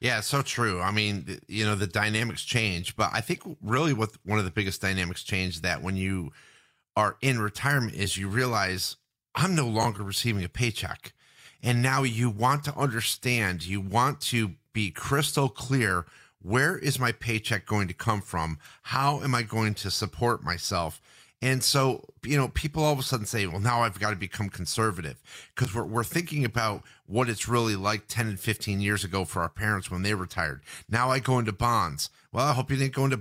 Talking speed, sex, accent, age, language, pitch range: 200 wpm, male, American, 30-49, English, 100-125 Hz